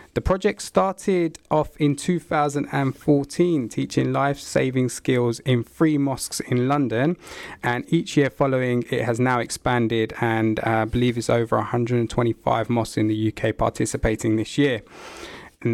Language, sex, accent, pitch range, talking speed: English, male, British, 115-140 Hz, 145 wpm